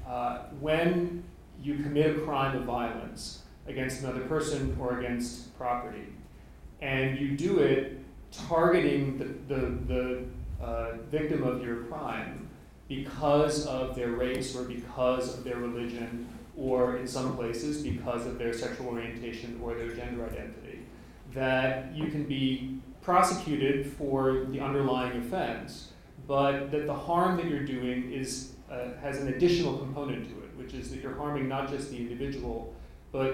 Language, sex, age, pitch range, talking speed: English, male, 30-49, 120-140 Hz, 150 wpm